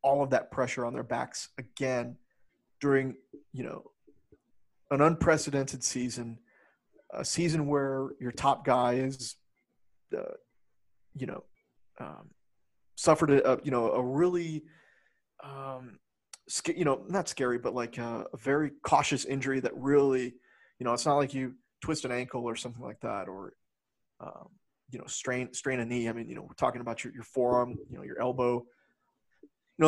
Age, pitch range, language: 30-49, 125-150 Hz, English